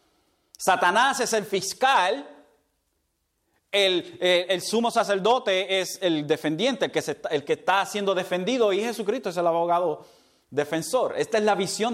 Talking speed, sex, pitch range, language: 135 wpm, male, 175-230 Hz, Spanish